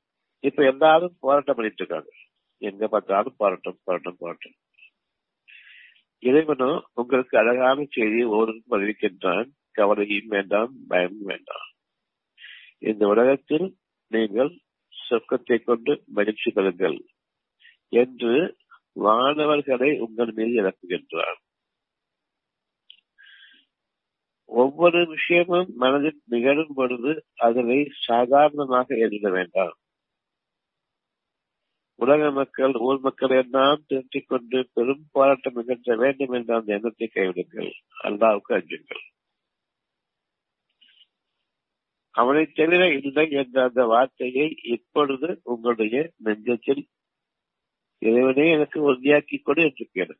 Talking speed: 70 wpm